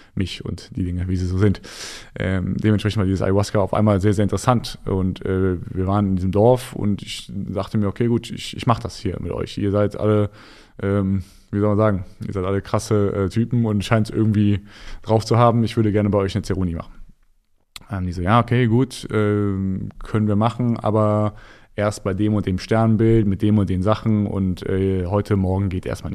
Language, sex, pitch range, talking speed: German, male, 95-110 Hz, 220 wpm